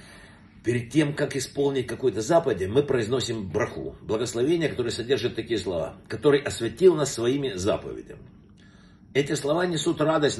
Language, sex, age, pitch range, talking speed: Russian, male, 60-79, 120-150 Hz, 135 wpm